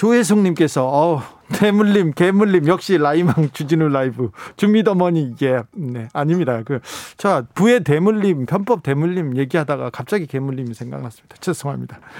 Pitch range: 140-200 Hz